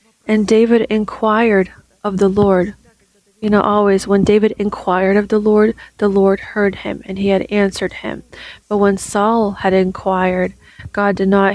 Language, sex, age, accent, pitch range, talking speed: English, female, 30-49, American, 195-220 Hz, 165 wpm